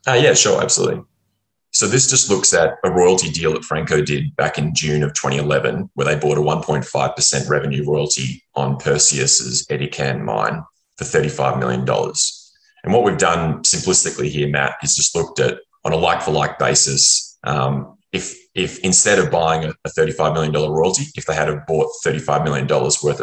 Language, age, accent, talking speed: English, 20-39, Australian, 170 wpm